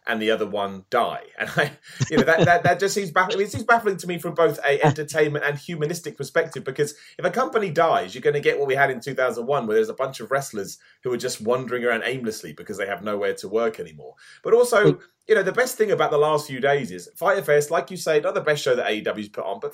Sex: male